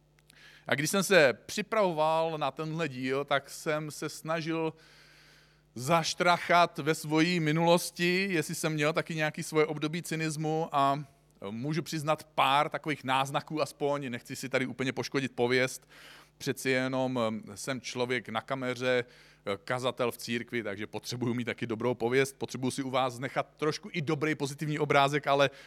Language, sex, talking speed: Czech, male, 145 wpm